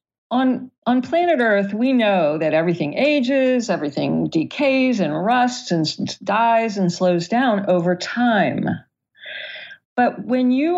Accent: American